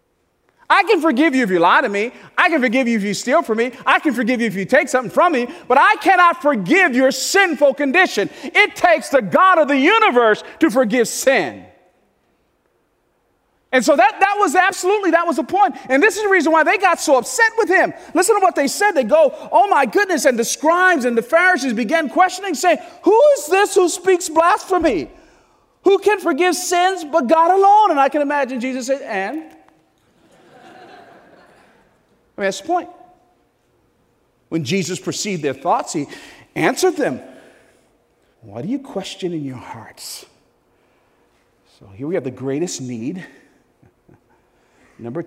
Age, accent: 40-59, American